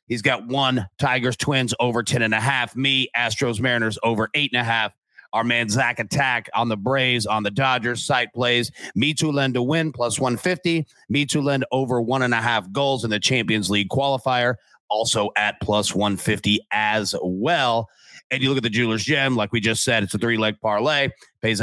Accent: American